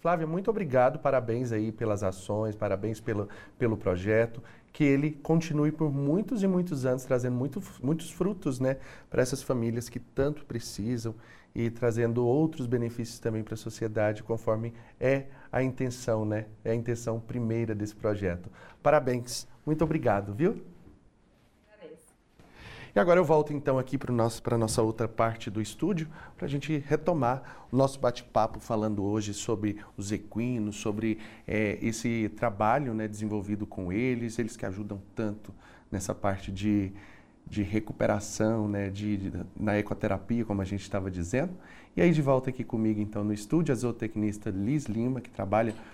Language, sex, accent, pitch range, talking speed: Portuguese, male, Brazilian, 105-130 Hz, 155 wpm